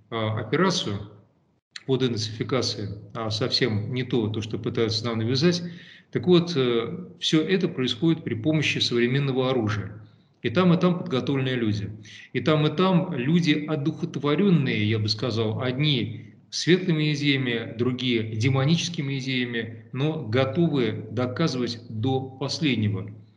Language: Russian